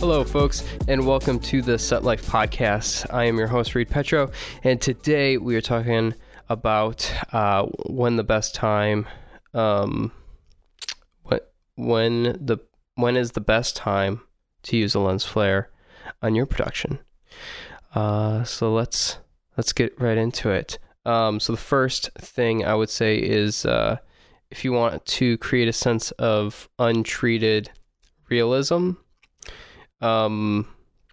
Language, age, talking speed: English, 20-39, 140 wpm